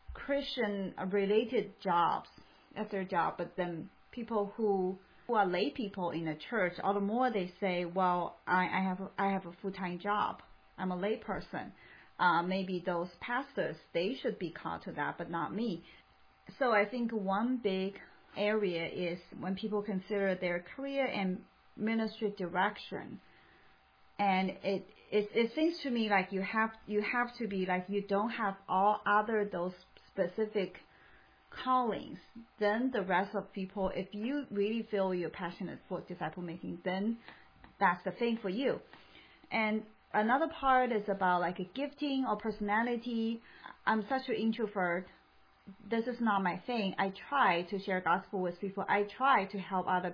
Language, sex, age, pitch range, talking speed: English, female, 30-49, 185-220 Hz, 165 wpm